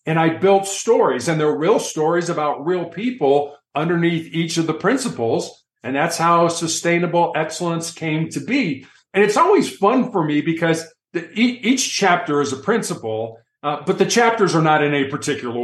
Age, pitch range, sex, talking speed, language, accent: 50-69, 145-180 Hz, male, 180 wpm, English, American